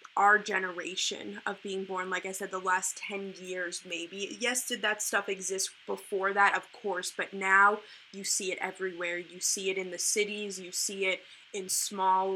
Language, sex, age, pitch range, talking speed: English, female, 20-39, 185-205 Hz, 190 wpm